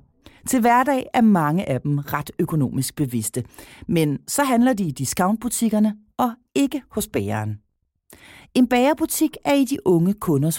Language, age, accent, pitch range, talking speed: Danish, 40-59, native, 140-235 Hz, 145 wpm